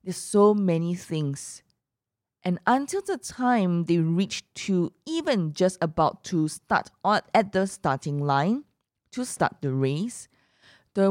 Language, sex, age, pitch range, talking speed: English, female, 20-39, 145-205 Hz, 135 wpm